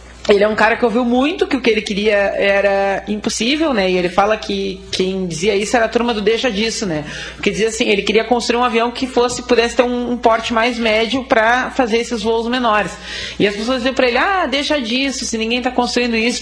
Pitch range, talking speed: 220-250 Hz, 240 wpm